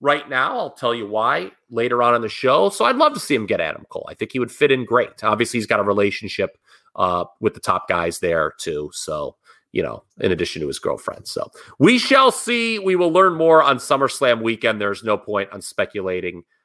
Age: 30-49